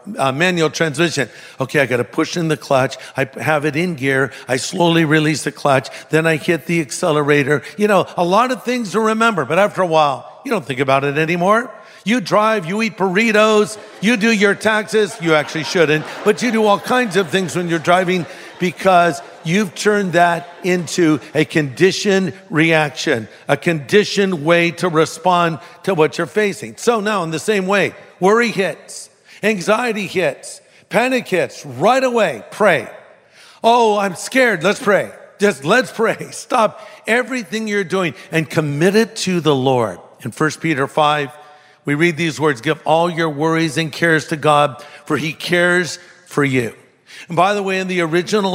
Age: 50-69